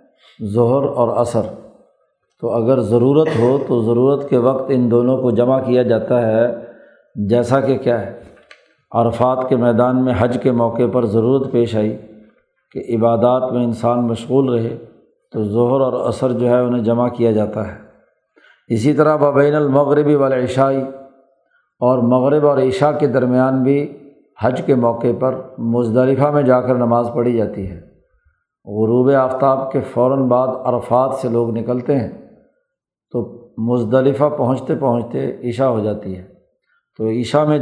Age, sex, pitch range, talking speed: 50-69, male, 115-130 Hz, 150 wpm